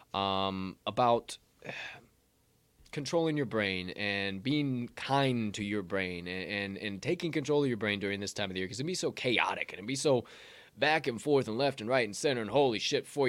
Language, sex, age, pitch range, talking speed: English, male, 20-39, 95-130 Hz, 210 wpm